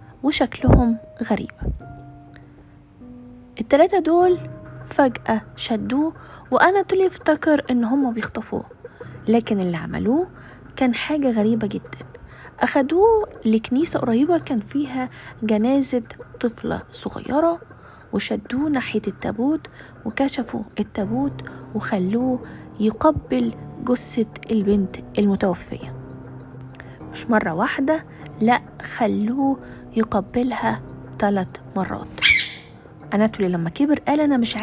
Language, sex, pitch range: Arabic, female, 205-280 Hz